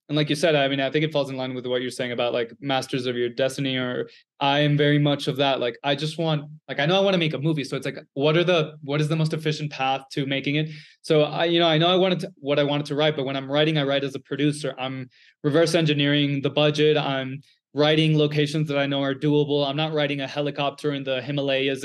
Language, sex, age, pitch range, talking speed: English, male, 20-39, 140-160 Hz, 275 wpm